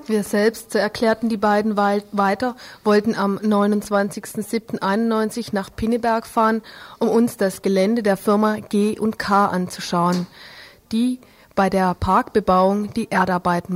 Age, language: 30-49, German